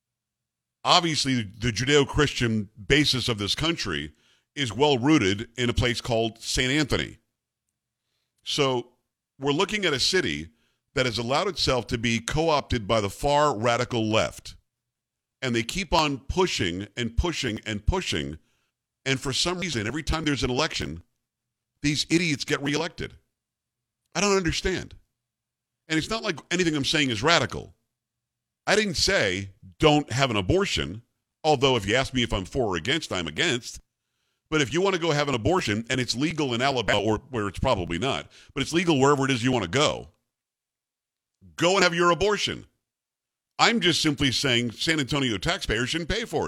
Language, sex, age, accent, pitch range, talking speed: English, male, 50-69, American, 115-155 Hz, 170 wpm